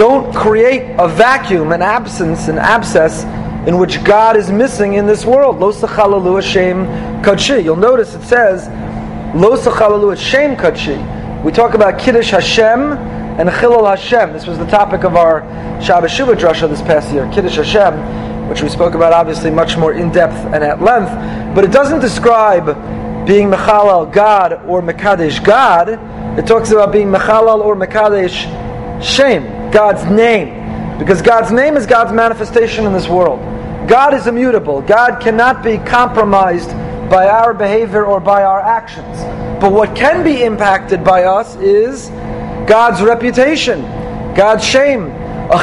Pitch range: 195-245 Hz